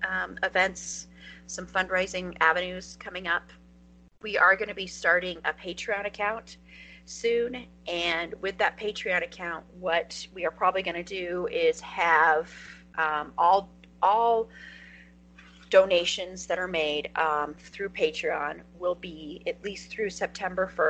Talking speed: 135 wpm